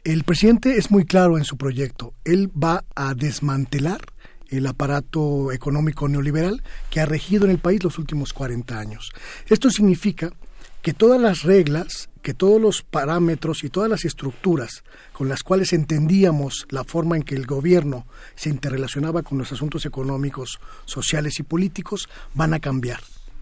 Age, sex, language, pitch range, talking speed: 40-59, male, Spanish, 140-185 Hz, 160 wpm